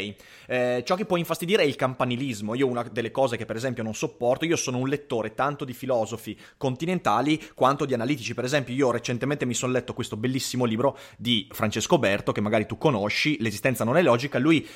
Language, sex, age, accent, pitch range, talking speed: Italian, male, 20-39, native, 120-150 Hz, 205 wpm